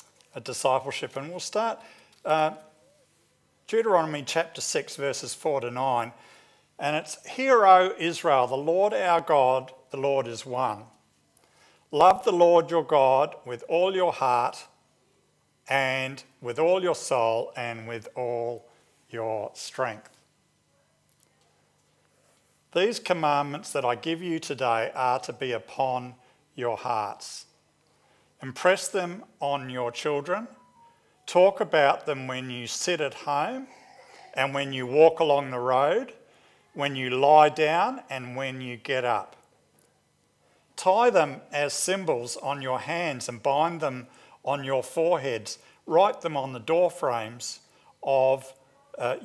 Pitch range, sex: 130-170 Hz, male